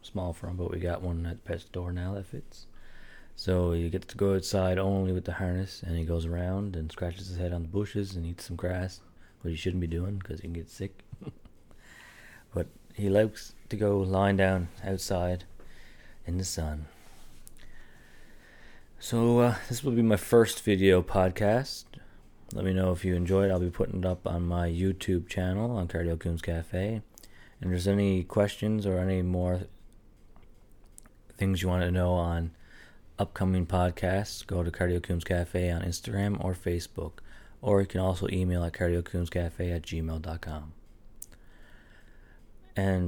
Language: English